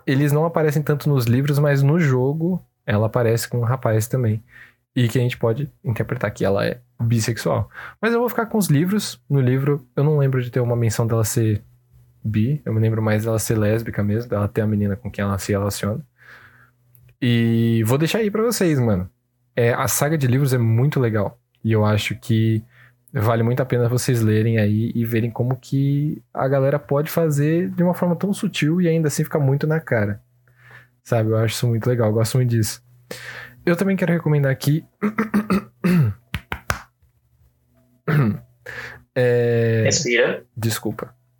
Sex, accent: male, Brazilian